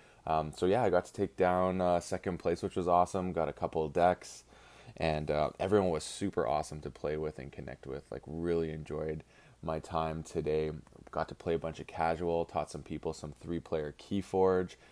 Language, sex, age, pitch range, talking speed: English, male, 20-39, 75-85 Hz, 200 wpm